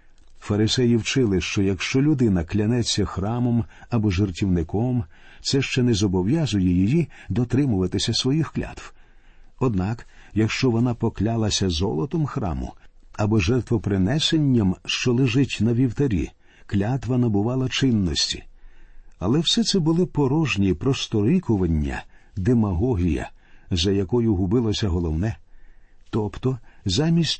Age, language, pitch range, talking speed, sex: 50-69, Ukrainian, 100-130 Hz, 100 wpm, male